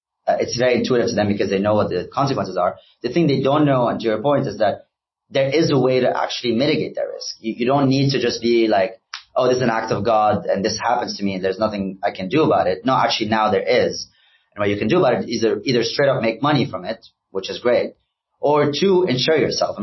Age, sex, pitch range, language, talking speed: 30-49, male, 105-135 Hz, English, 270 wpm